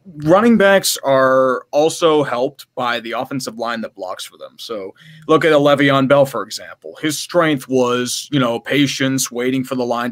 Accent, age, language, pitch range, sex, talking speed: American, 20-39, English, 125-145 Hz, male, 185 wpm